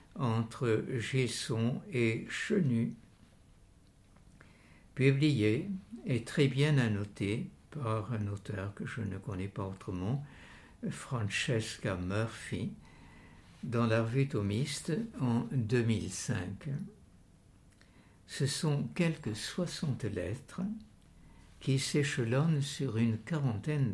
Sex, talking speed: male, 90 wpm